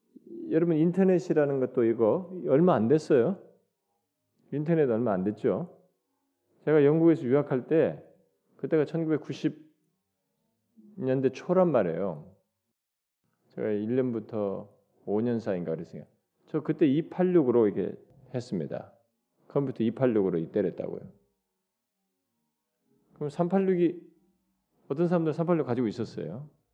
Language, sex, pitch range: Korean, male, 105-170 Hz